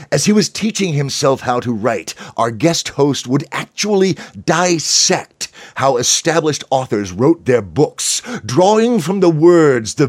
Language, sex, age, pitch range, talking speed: English, male, 50-69, 135-190 Hz, 150 wpm